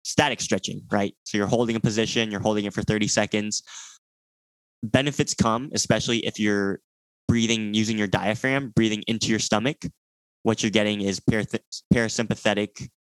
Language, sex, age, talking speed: English, male, 10-29, 145 wpm